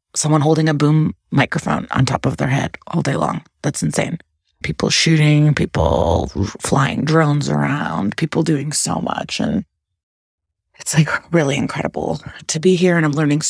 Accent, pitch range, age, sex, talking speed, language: American, 140-165 Hz, 30-49, female, 160 wpm, English